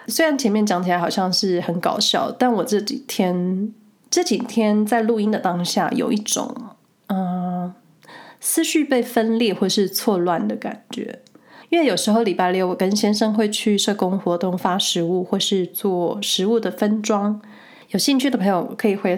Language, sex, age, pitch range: Chinese, female, 20-39, 190-240 Hz